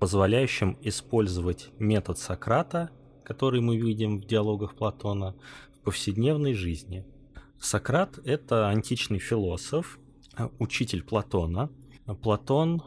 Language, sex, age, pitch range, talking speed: Russian, male, 20-39, 95-135 Hz, 95 wpm